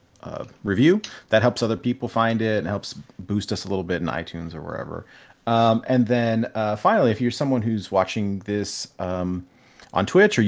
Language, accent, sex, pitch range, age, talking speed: English, American, male, 95-115 Hz, 40-59, 195 wpm